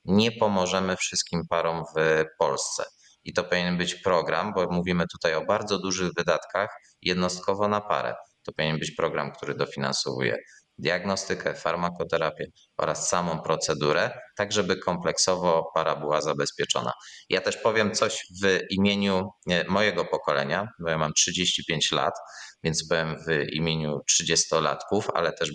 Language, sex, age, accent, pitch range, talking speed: Polish, male, 30-49, native, 80-95 Hz, 135 wpm